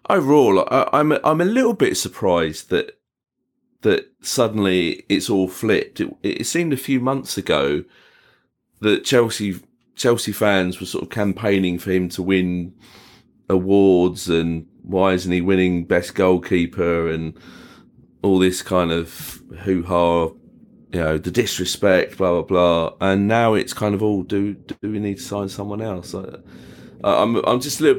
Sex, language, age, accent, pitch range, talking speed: male, English, 30-49, British, 85-100 Hz, 155 wpm